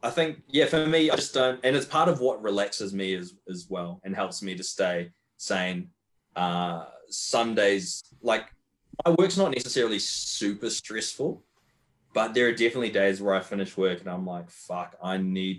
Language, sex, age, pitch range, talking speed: English, male, 20-39, 90-115 Hz, 190 wpm